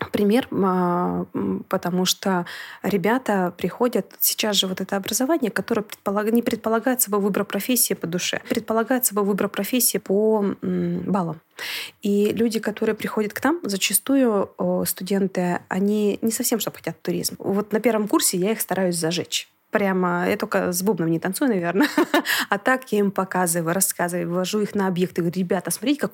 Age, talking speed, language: 20-39, 155 wpm, Russian